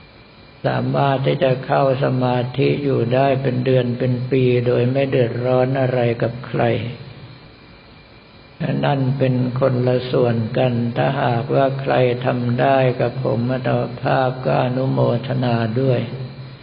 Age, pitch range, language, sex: 60-79, 120-135 Hz, Thai, male